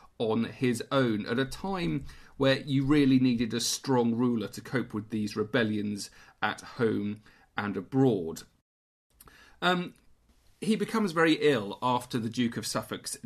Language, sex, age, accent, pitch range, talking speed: English, male, 40-59, British, 115-145 Hz, 145 wpm